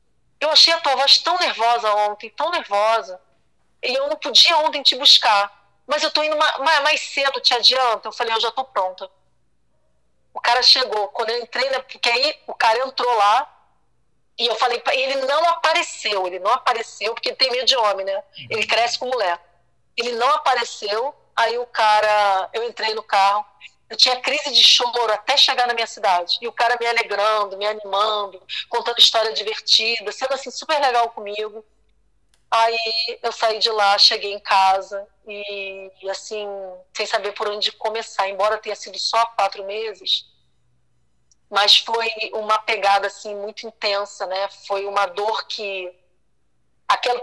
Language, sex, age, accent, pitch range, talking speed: Portuguese, female, 40-59, Brazilian, 205-260 Hz, 170 wpm